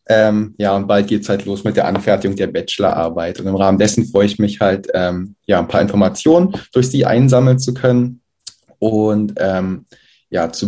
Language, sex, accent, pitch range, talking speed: German, male, German, 100-120 Hz, 195 wpm